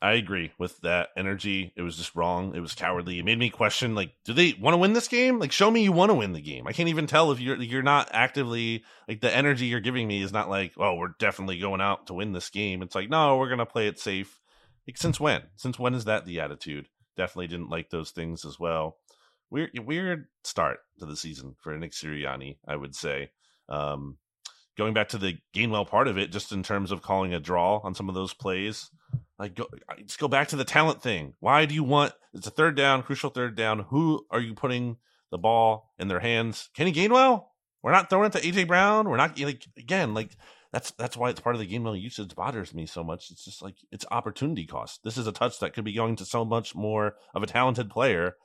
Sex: male